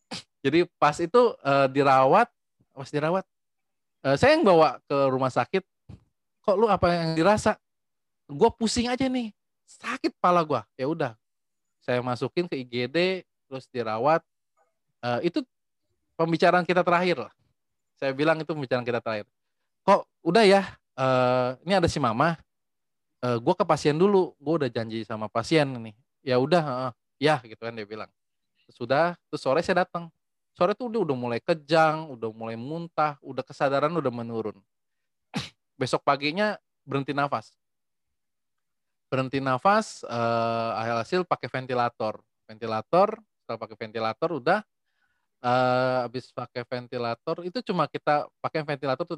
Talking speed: 140 wpm